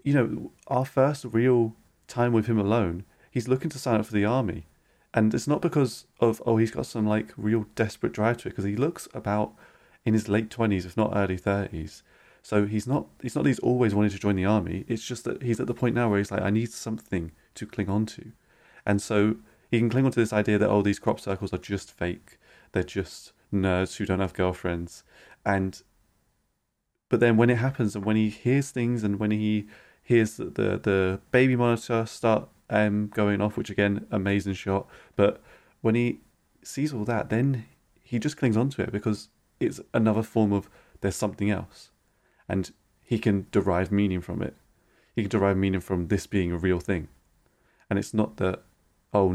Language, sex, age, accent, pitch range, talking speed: English, male, 30-49, British, 95-115 Hz, 200 wpm